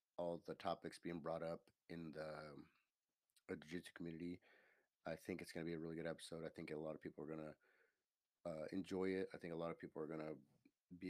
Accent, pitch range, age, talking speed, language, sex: American, 80-95 Hz, 30-49, 240 wpm, English, male